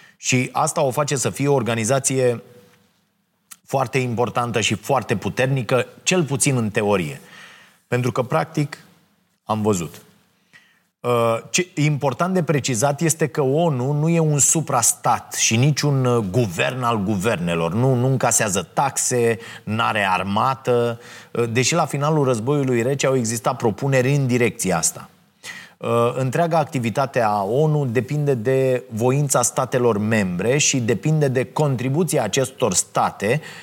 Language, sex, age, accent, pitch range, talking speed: Romanian, male, 30-49, native, 115-140 Hz, 125 wpm